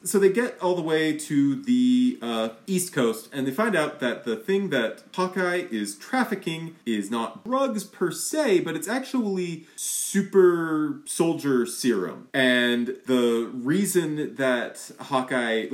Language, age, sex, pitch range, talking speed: English, 30-49, male, 115-165 Hz, 145 wpm